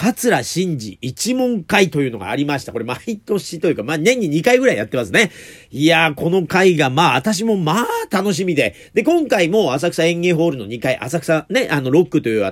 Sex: male